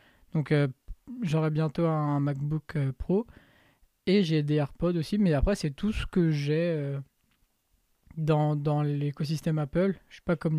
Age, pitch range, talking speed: 20-39, 150-185 Hz, 170 wpm